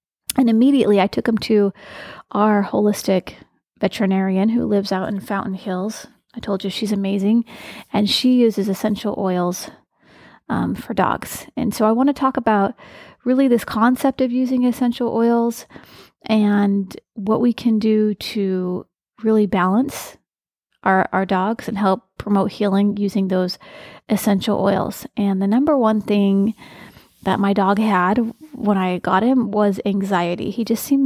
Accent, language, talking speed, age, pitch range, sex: American, English, 155 wpm, 30-49, 195-230 Hz, female